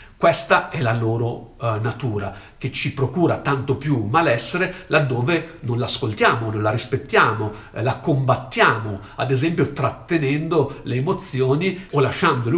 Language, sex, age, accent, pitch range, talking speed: Italian, male, 50-69, native, 110-140 Hz, 135 wpm